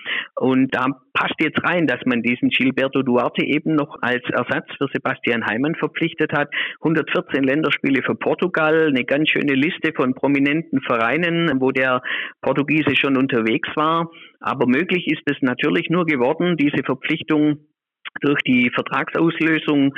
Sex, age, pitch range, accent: male, 50-69, 125-155 Hz, German